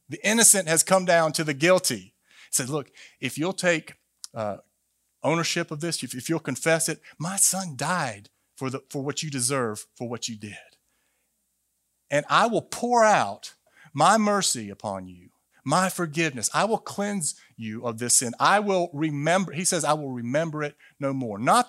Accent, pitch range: American, 135-190 Hz